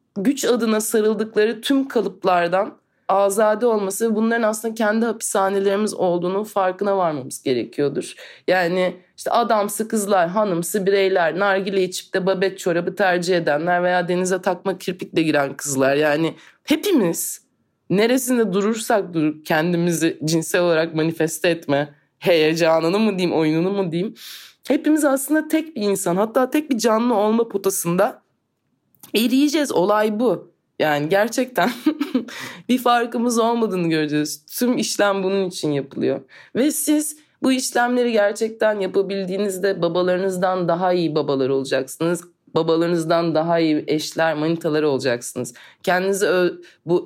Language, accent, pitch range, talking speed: Turkish, native, 165-220 Hz, 120 wpm